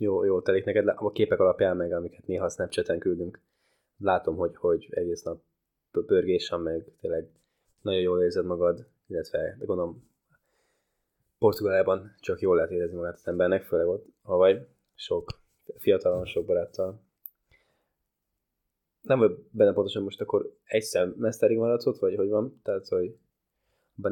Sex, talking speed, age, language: male, 145 wpm, 20-39, Hungarian